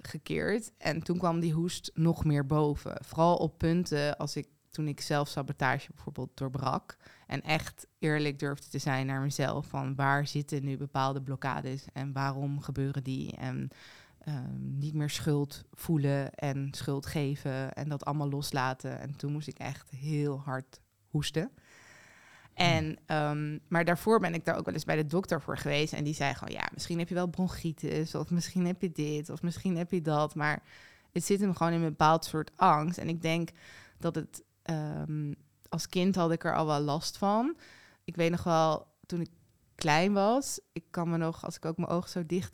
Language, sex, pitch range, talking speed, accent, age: Dutch, female, 145-175 Hz, 190 wpm, Dutch, 20-39